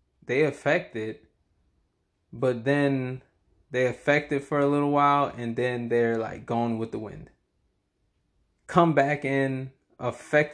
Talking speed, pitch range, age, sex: 135 wpm, 115-150 Hz, 20-39, male